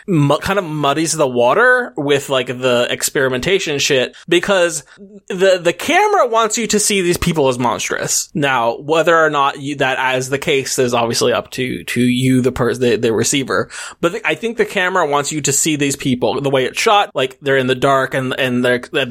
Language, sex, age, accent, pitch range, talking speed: English, male, 20-39, American, 130-170 Hz, 200 wpm